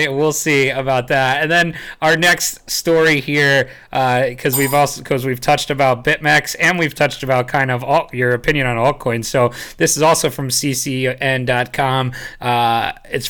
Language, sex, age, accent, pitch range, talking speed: English, male, 30-49, American, 125-150 Hz, 170 wpm